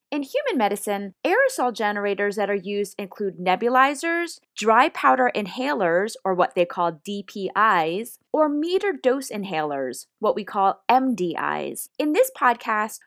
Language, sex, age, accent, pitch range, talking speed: English, female, 20-39, American, 190-280 Hz, 135 wpm